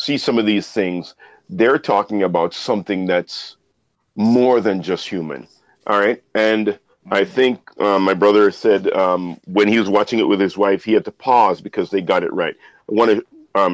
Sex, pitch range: male, 100-140 Hz